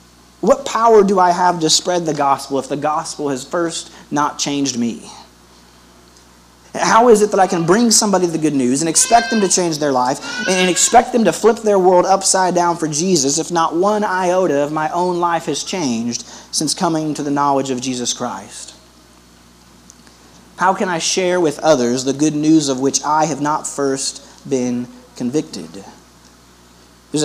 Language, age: English, 30-49